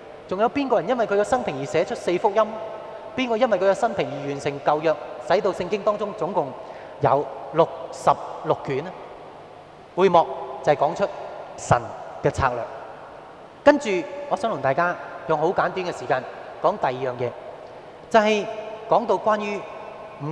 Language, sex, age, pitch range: Japanese, male, 30-49, 165-235 Hz